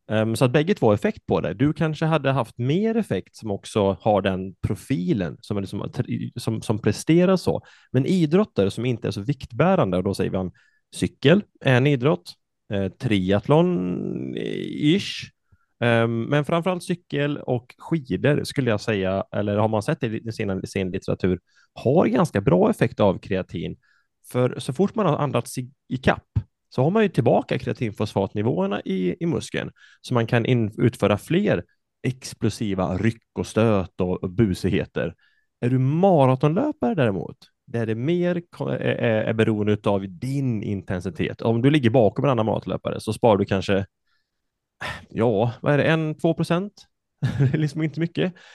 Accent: Norwegian